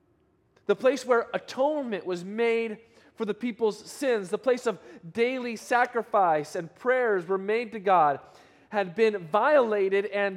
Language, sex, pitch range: English, male, 160-225 Hz